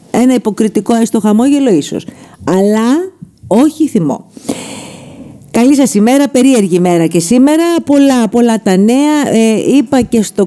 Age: 50-69